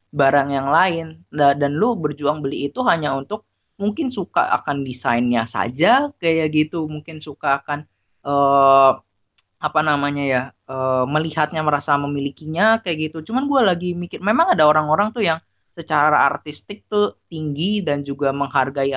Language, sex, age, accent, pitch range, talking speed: Indonesian, female, 20-39, native, 135-170 Hz, 150 wpm